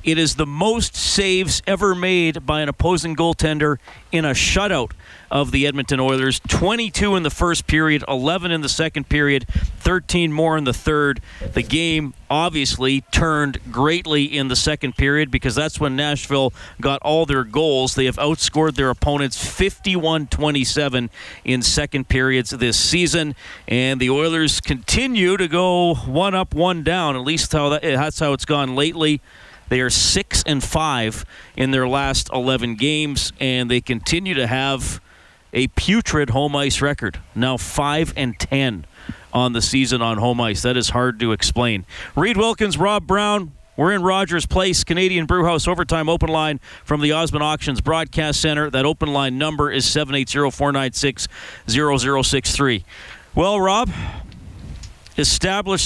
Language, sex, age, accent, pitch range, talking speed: English, male, 40-59, American, 130-165 Hz, 150 wpm